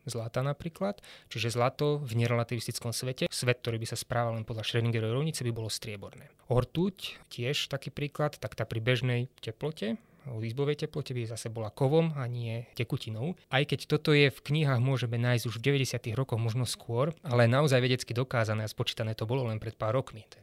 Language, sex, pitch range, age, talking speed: Slovak, male, 115-135 Hz, 20-39, 195 wpm